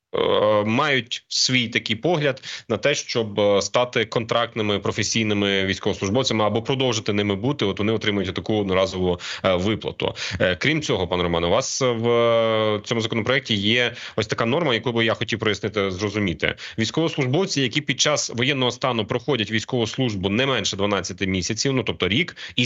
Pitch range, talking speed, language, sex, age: 110-145 Hz, 150 wpm, Ukrainian, male, 30-49